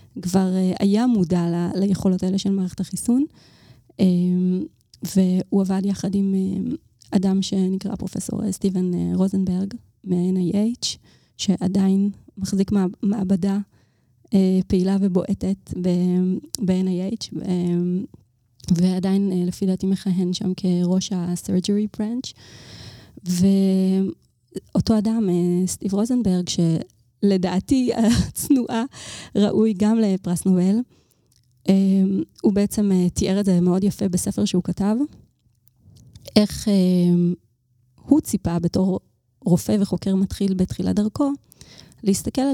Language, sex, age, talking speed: Hebrew, female, 20-39, 105 wpm